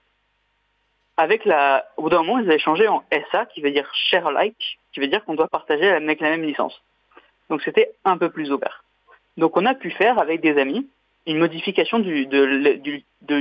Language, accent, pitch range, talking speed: French, French, 145-240 Hz, 205 wpm